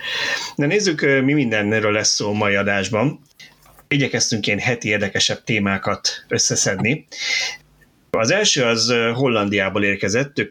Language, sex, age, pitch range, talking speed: Hungarian, male, 30-49, 100-125 Hz, 120 wpm